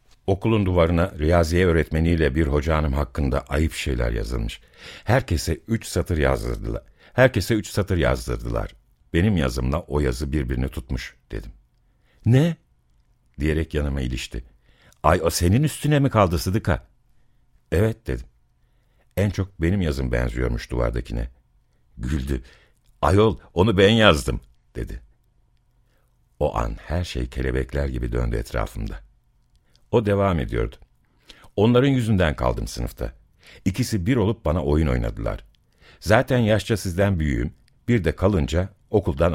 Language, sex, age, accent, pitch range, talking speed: Turkish, male, 60-79, native, 65-100 Hz, 120 wpm